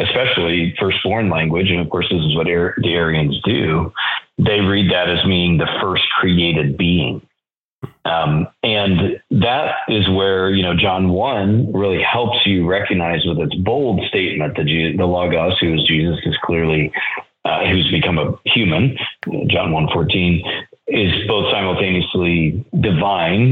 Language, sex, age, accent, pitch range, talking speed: English, male, 30-49, American, 85-105 Hz, 155 wpm